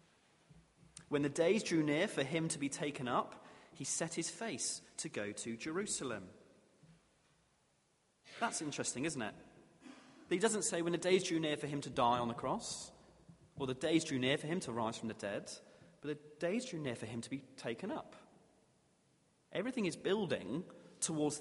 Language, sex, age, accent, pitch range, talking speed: English, male, 30-49, British, 130-170 Hz, 180 wpm